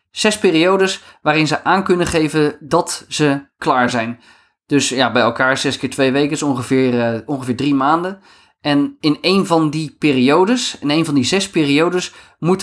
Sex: male